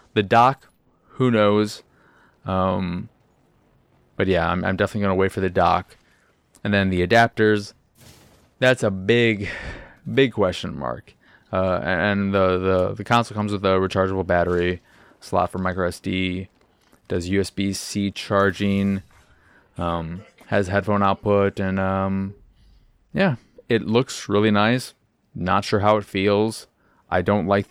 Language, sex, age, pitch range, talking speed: English, male, 20-39, 90-105 Hz, 135 wpm